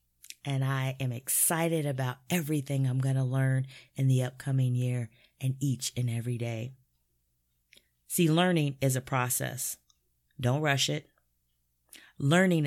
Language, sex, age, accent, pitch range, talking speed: English, female, 30-49, American, 120-155 Hz, 135 wpm